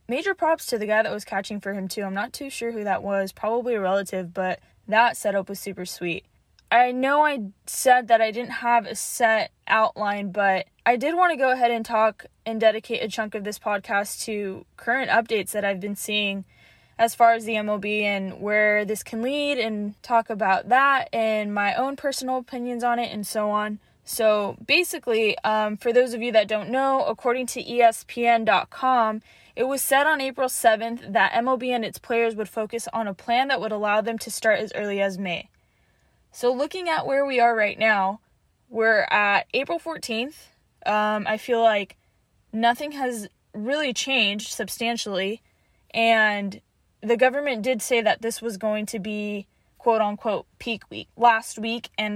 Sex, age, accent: female, 10-29, American